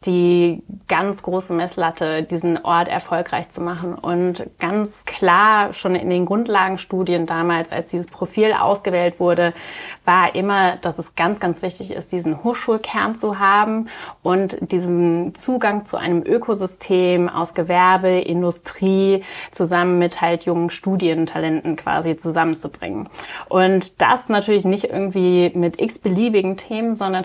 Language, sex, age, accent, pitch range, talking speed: German, female, 30-49, German, 170-195 Hz, 130 wpm